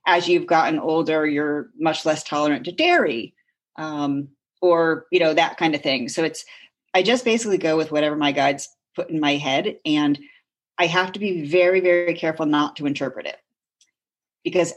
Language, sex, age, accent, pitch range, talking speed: English, female, 40-59, American, 150-185 Hz, 185 wpm